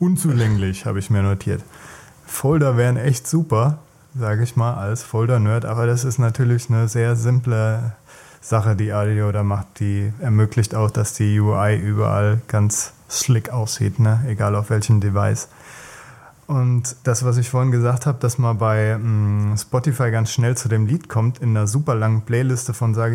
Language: German